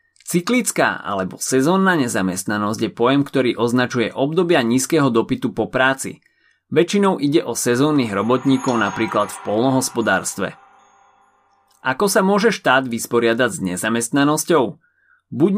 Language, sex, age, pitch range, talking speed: Slovak, male, 30-49, 110-150 Hz, 110 wpm